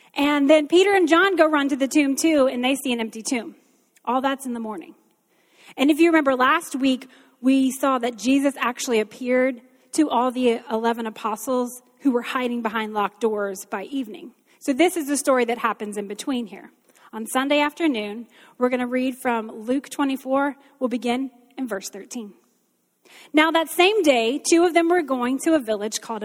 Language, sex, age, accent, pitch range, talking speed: English, female, 30-49, American, 230-295 Hz, 195 wpm